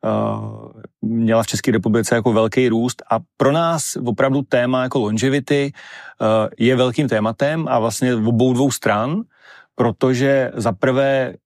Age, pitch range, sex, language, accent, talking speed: 30-49, 110-125 Hz, male, Czech, native, 125 wpm